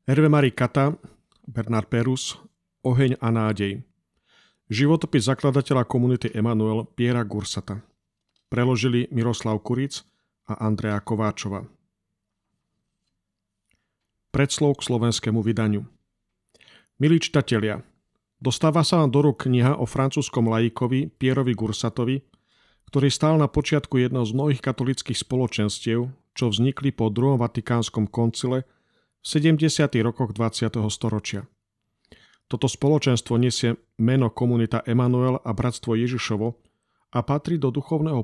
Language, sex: Slovak, male